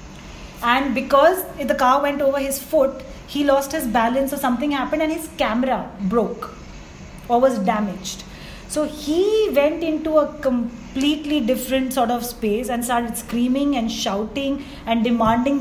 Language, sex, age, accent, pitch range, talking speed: Hindi, female, 30-49, native, 235-280 Hz, 155 wpm